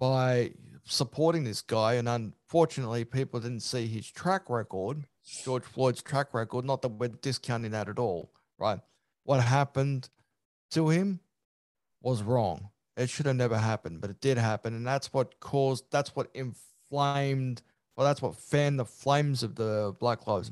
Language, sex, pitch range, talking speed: English, male, 120-145 Hz, 165 wpm